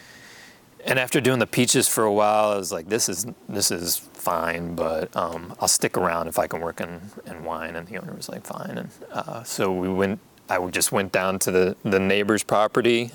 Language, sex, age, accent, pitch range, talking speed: English, male, 30-49, American, 95-120 Hz, 220 wpm